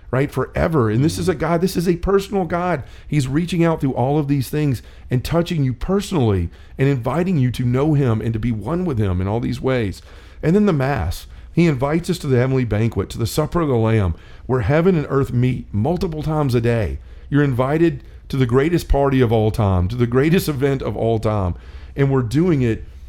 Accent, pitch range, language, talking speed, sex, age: American, 110-140 Hz, English, 225 wpm, male, 40-59